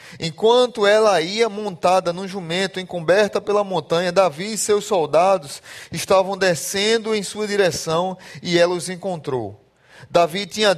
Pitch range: 180-220 Hz